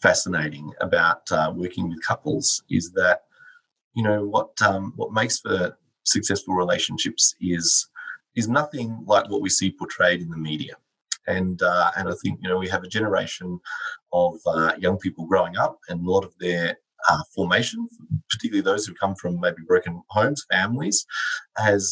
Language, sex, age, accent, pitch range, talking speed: English, male, 30-49, Australian, 95-120 Hz, 170 wpm